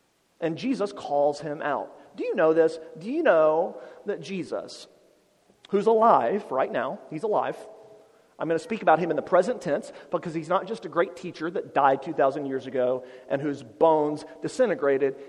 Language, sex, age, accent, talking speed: English, male, 40-59, American, 180 wpm